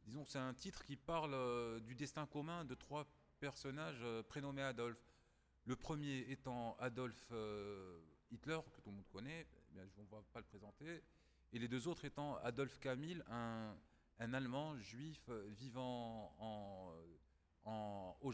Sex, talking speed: male, 165 wpm